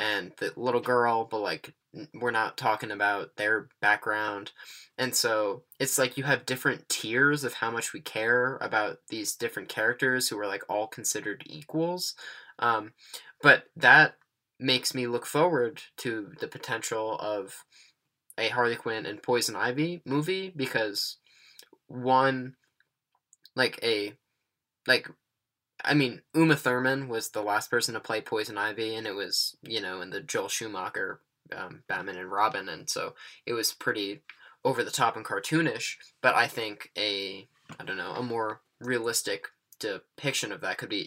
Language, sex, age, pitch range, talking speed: English, male, 10-29, 110-140 Hz, 160 wpm